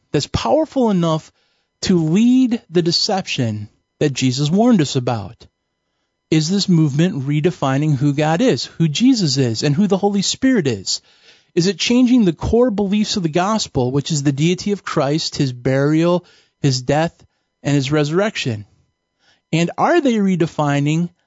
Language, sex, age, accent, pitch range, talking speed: English, male, 40-59, American, 140-200 Hz, 150 wpm